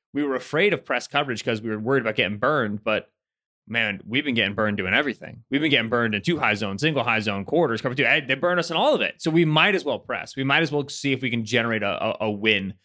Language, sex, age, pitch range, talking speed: English, male, 20-39, 110-140 Hz, 285 wpm